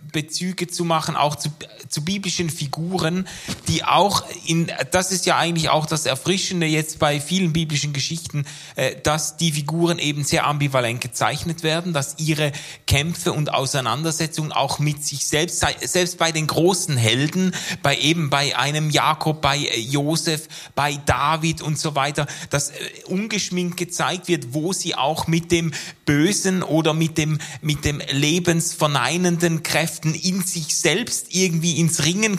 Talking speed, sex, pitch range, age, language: 145 wpm, male, 150-180 Hz, 30-49, German